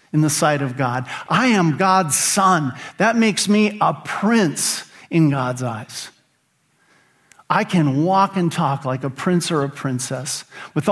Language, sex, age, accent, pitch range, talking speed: English, male, 50-69, American, 135-175 Hz, 160 wpm